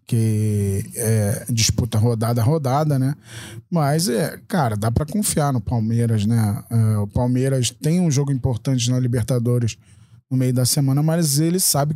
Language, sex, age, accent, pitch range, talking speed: Portuguese, male, 20-39, Brazilian, 120-150 Hz, 155 wpm